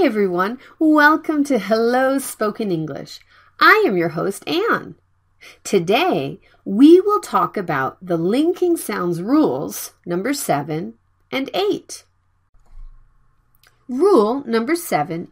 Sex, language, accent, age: female, Korean, American, 40-59